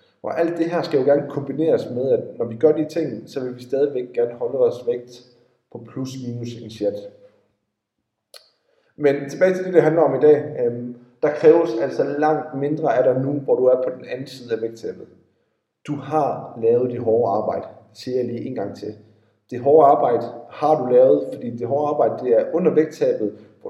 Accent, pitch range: native, 125-175 Hz